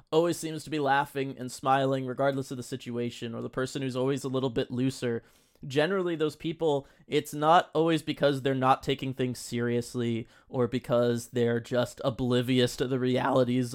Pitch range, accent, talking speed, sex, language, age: 120-140 Hz, American, 175 wpm, male, English, 20-39